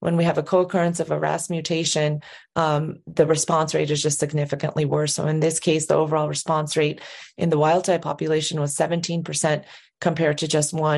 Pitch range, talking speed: 150-165 Hz, 190 wpm